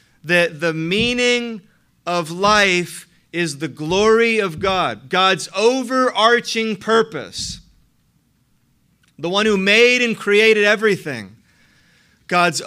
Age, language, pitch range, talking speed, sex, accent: 40-59, English, 145-200 Hz, 100 wpm, male, American